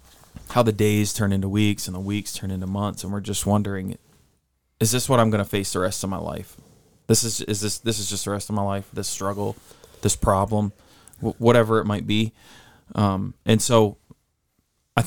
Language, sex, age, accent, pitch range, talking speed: English, male, 20-39, American, 100-115 Hz, 215 wpm